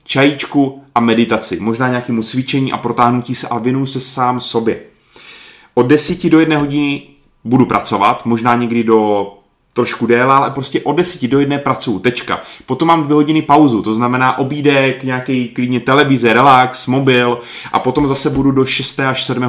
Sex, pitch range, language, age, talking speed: male, 115-140 Hz, Czech, 30-49, 170 wpm